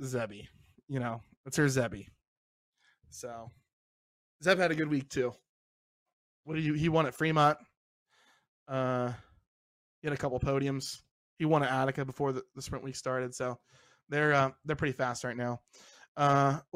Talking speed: 160 wpm